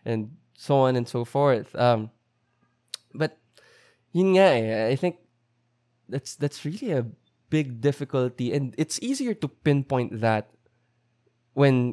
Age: 20-39